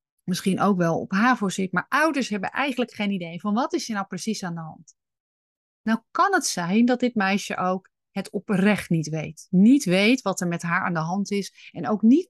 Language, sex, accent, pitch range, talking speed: Dutch, female, Dutch, 180-240 Hz, 225 wpm